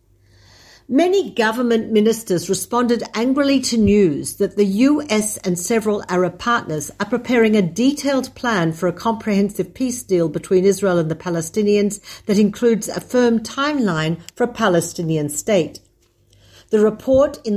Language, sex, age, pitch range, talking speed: Hebrew, female, 50-69, 175-230 Hz, 140 wpm